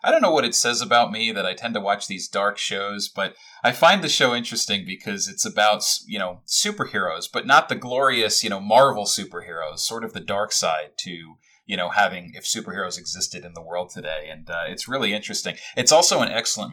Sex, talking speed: male, 220 wpm